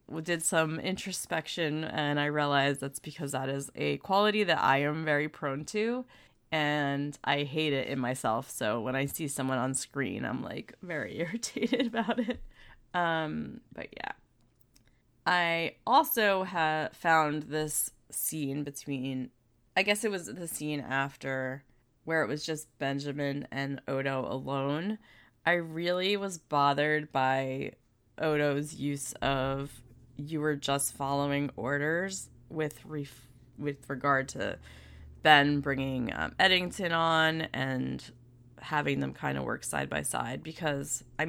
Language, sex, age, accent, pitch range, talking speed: English, female, 20-39, American, 135-165 Hz, 140 wpm